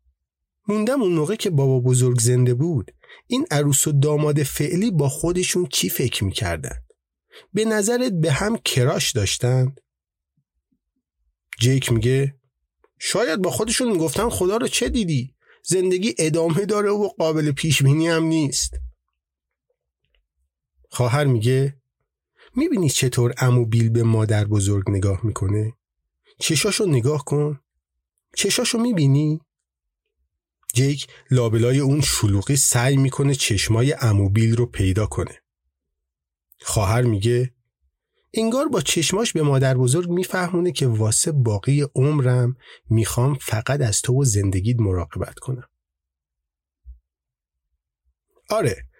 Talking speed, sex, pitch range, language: 110 wpm, male, 100-160 Hz, Persian